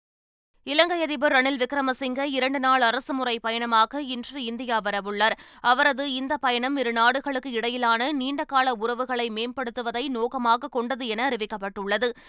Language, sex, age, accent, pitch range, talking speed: Tamil, female, 20-39, native, 235-275 Hz, 110 wpm